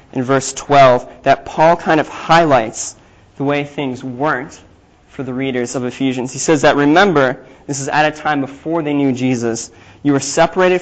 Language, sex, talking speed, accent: English, male, 185 wpm, American